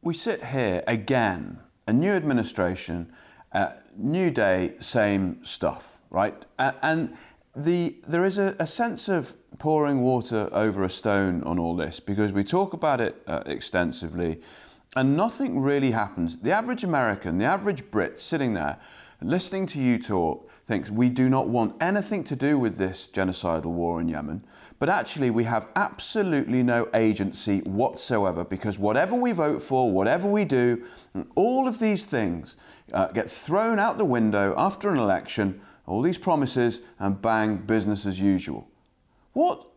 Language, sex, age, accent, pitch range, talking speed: English, male, 30-49, British, 100-160 Hz, 160 wpm